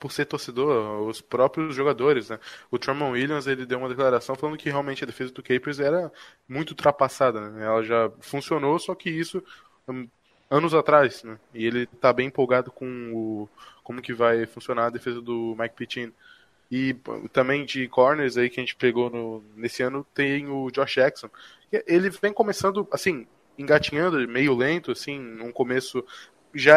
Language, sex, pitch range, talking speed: Portuguese, male, 125-160 Hz, 175 wpm